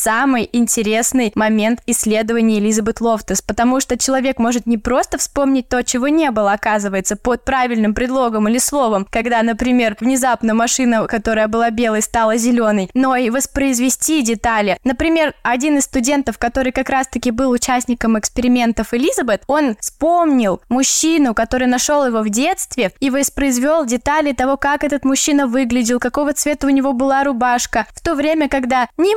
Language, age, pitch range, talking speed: Russian, 10-29, 225-275 Hz, 150 wpm